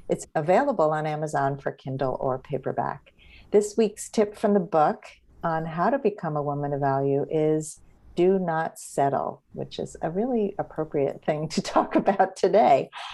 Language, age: English, 50-69